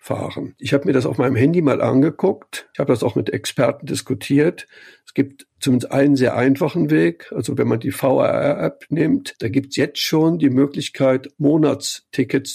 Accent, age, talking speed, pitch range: German, 60-79, 185 wpm, 125-145 Hz